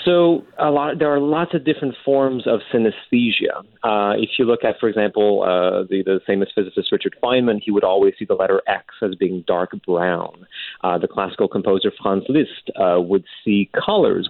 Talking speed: 195 wpm